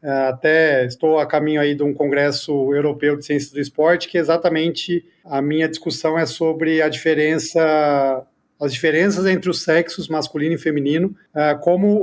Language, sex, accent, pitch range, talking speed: Portuguese, male, Brazilian, 150-180 Hz, 155 wpm